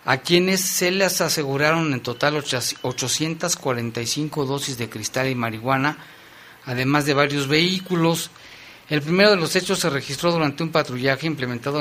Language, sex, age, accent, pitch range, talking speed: Spanish, male, 50-69, Mexican, 130-155 Hz, 140 wpm